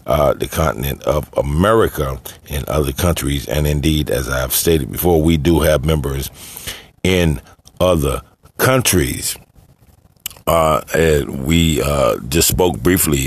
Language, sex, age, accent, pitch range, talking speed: English, male, 50-69, American, 75-90 Hz, 120 wpm